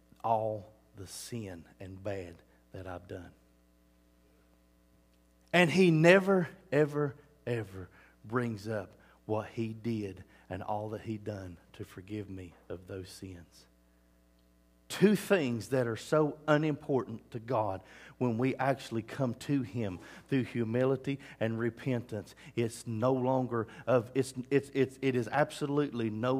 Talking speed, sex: 125 wpm, male